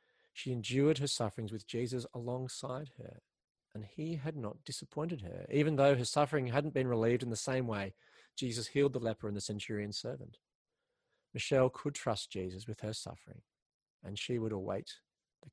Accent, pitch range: Australian, 110-140 Hz